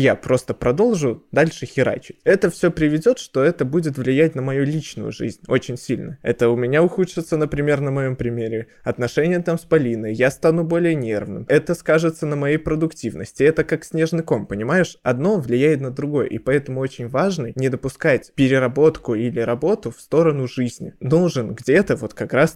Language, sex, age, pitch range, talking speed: Russian, male, 20-39, 120-155 Hz, 175 wpm